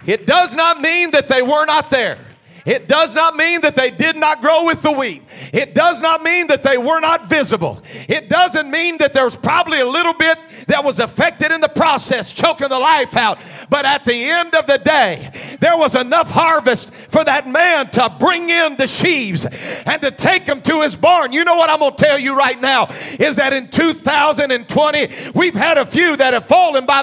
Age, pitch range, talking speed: 50-69, 250-330 Hz, 215 wpm